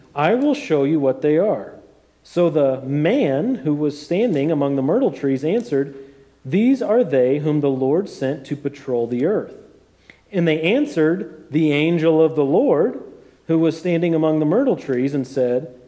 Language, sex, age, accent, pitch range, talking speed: English, male, 40-59, American, 135-180 Hz, 175 wpm